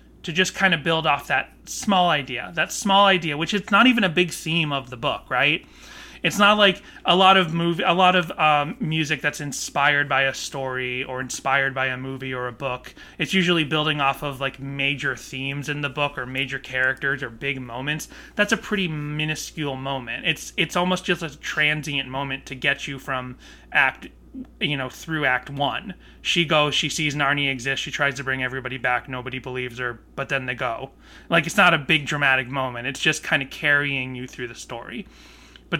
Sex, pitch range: male, 135-165 Hz